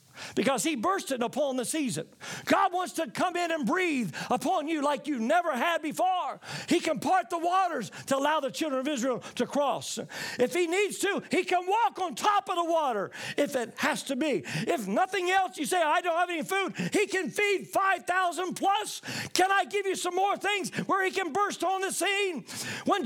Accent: American